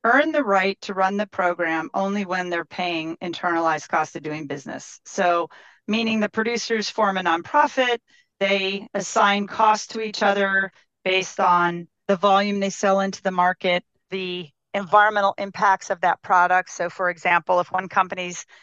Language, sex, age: English, female, 40-59